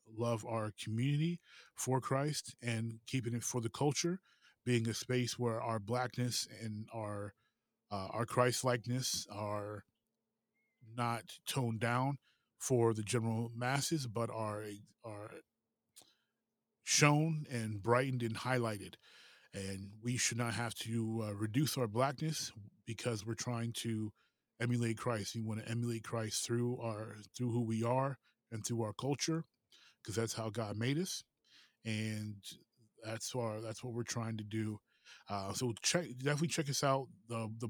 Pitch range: 110-125 Hz